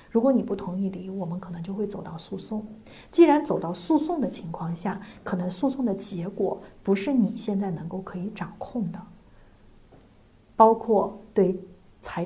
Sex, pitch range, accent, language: female, 185-220 Hz, native, Chinese